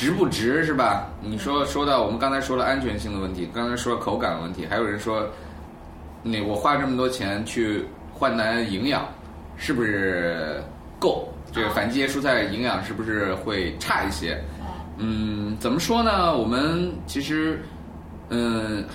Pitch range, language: 80-115 Hz, Chinese